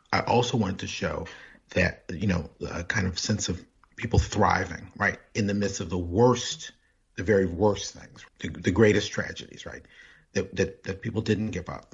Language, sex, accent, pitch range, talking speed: English, male, American, 85-105 Hz, 190 wpm